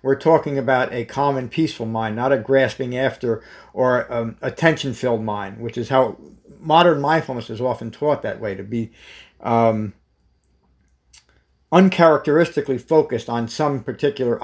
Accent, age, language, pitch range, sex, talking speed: American, 50-69, English, 110-140 Hz, male, 140 wpm